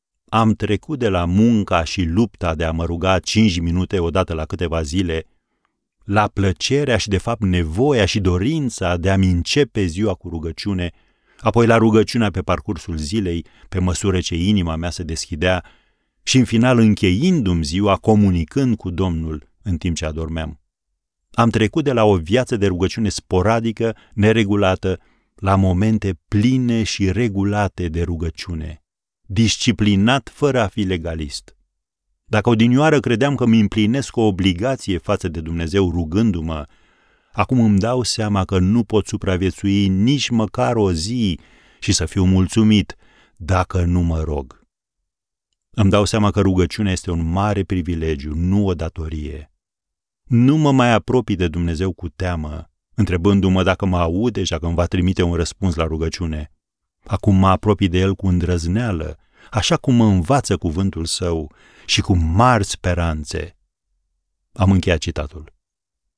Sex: male